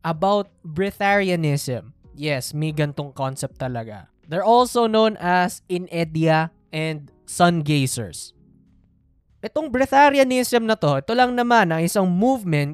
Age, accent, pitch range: 20-39, native, 145-200 Hz